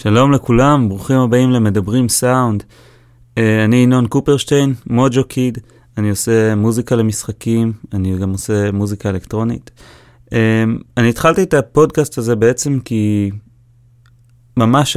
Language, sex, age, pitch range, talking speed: Hebrew, male, 20-39, 110-125 Hz, 110 wpm